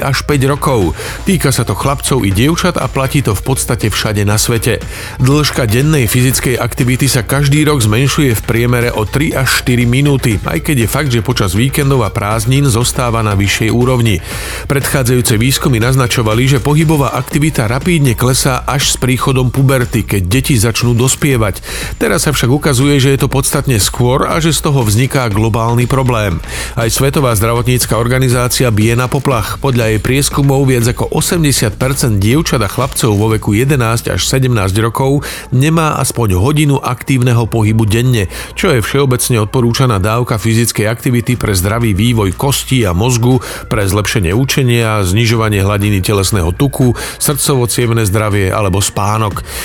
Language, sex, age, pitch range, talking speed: Slovak, male, 40-59, 110-135 Hz, 155 wpm